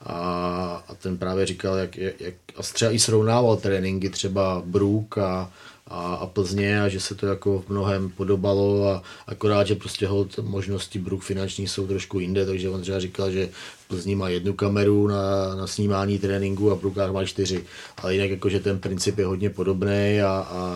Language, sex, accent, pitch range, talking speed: Czech, male, native, 95-105 Hz, 190 wpm